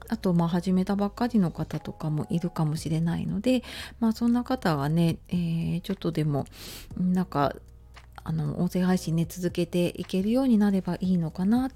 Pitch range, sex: 165-220 Hz, female